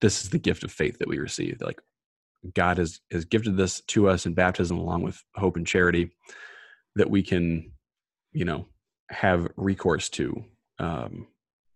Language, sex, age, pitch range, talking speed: English, male, 20-39, 85-95 Hz, 170 wpm